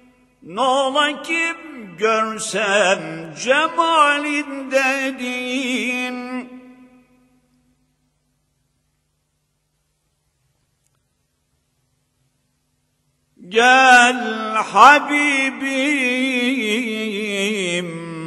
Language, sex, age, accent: Turkish, male, 50-69, native